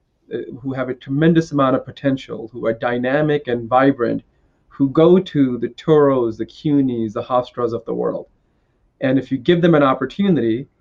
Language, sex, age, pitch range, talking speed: English, male, 30-49, 120-145 Hz, 170 wpm